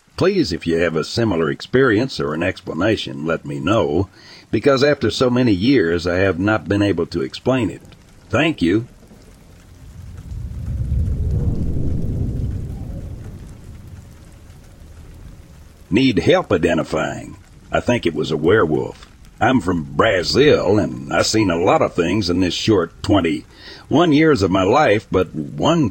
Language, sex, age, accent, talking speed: English, male, 60-79, American, 135 wpm